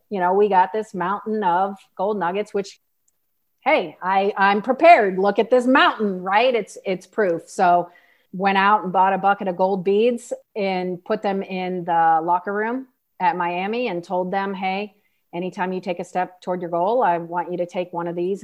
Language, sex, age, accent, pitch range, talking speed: English, female, 40-59, American, 180-215 Hz, 200 wpm